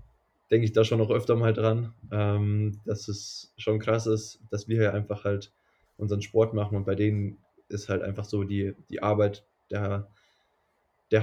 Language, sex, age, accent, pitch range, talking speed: German, male, 20-39, German, 100-110 Hz, 175 wpm